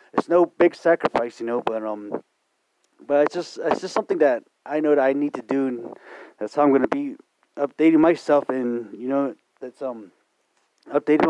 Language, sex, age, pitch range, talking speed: English, male, 30-49, 130-155 Hz, 195 wpm